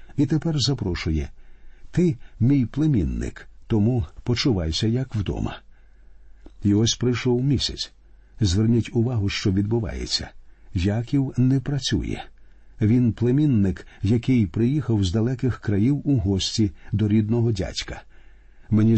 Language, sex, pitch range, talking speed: Ukrainian, male, 95-130 Hz, 110 wpm